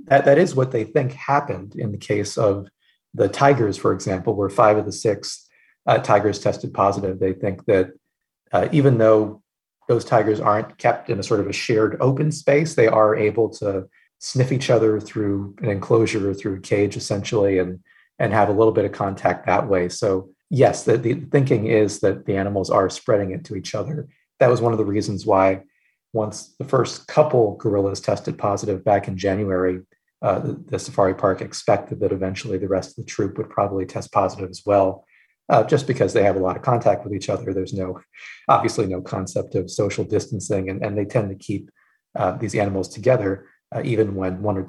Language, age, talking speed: English, 40-59, 205 wpm